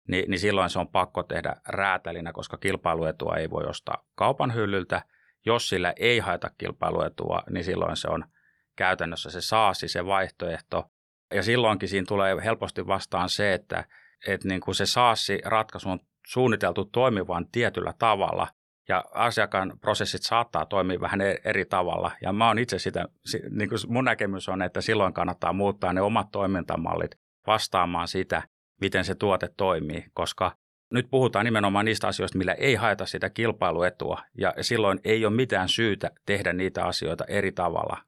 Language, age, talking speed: Finnish, 30-49, 155 wpm